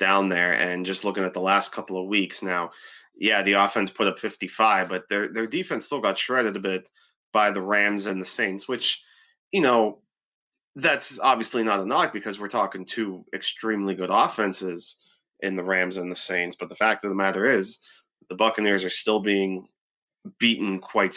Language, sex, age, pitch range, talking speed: English, male, 30-49, 95-110 Hz, 195 wpm